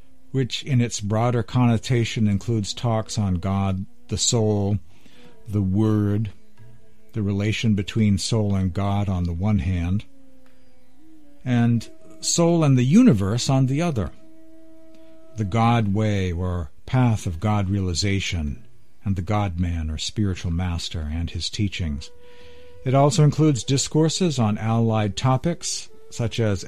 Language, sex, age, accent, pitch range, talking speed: English, male, 60-79, American, 100-135 Hz, 125 wpm